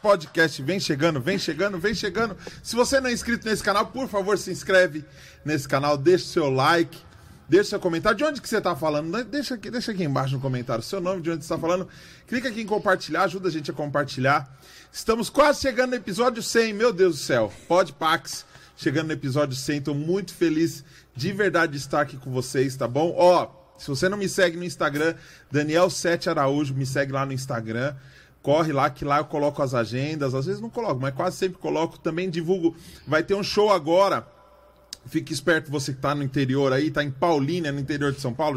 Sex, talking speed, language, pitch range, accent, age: male, 215 wpm, Portuguese, 135-190 Hz, Brazilian, 20-39